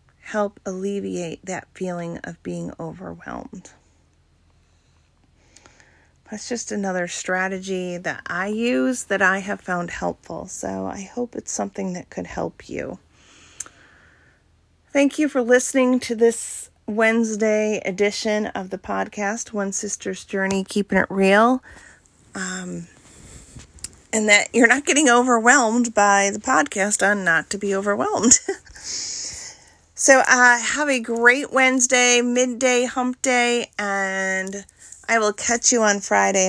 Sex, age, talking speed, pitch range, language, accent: female, 40-59, 125 wpm, 185-240 Hz, English, American